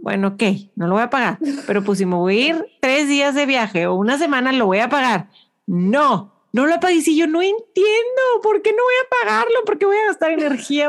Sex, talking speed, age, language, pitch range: female, 250 wpm, 30-49, Spanish, 200-265 Hz